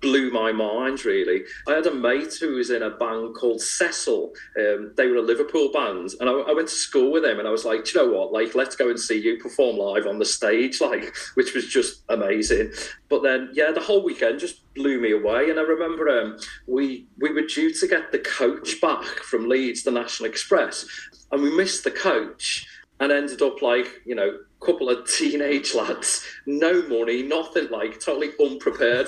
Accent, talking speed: British, 210 wpm